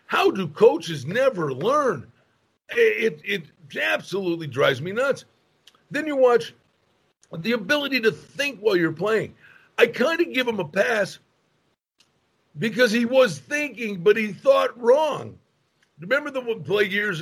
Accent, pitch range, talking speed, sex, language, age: American, 160-235 Hz, 145 wpm, male, English, 50-69